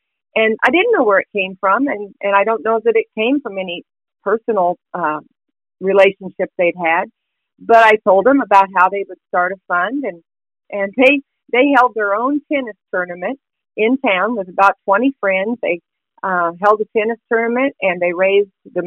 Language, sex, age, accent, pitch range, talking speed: English, female, 50-69, American, 180-230 Hz, 190 wpm